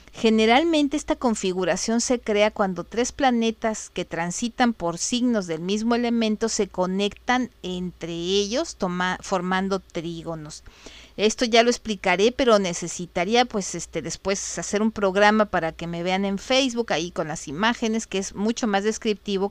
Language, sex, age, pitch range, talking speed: Spanish, female, 40-59, 185-230 Hz, 140 wpm